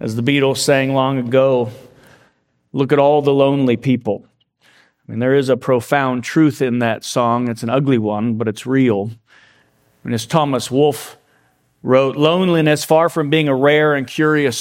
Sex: male